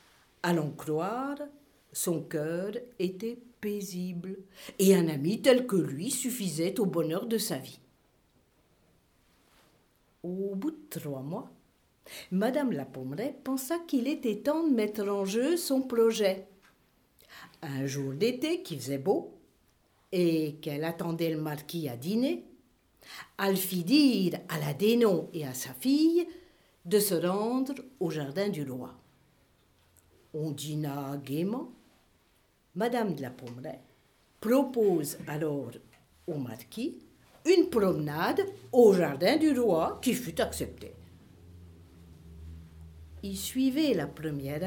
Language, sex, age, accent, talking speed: French, female, 50-69, French, 120 wpm